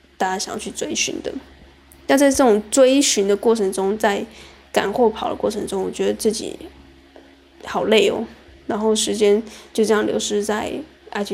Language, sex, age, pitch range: Chinese, female, 10-29, 215-260 Hz